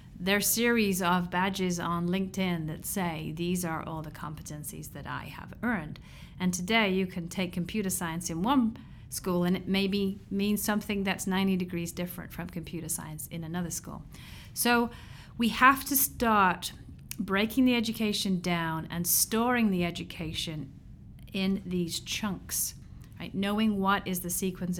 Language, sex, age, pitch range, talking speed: English, female, 30-49, 160-195 Hz, 155 wpm